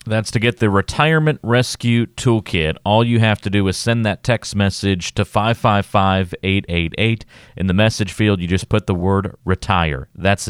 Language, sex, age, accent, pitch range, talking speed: English, male, 40-59, American, 85-110 Hz, 170 wpm